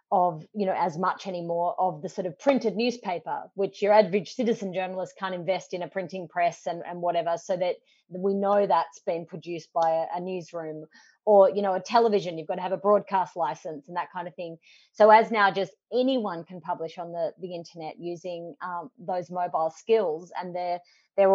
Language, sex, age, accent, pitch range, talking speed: English, female, 30-49, Australian, 170-200 Hz, 205 wpm